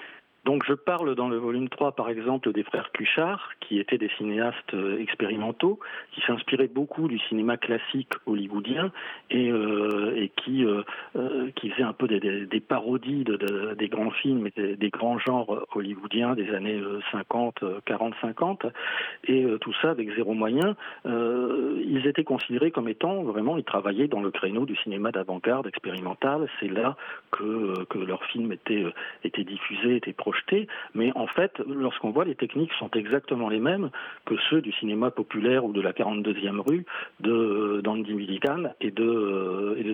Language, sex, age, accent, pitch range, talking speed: French, male, 40-59, French, 105-130 Hz, 170 wpm